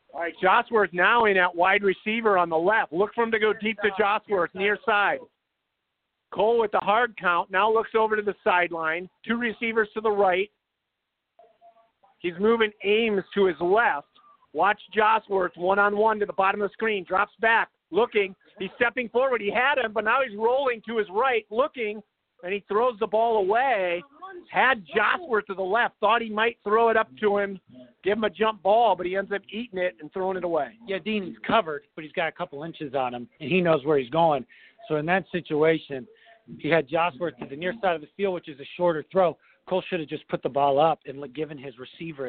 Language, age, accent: English, 50-69, American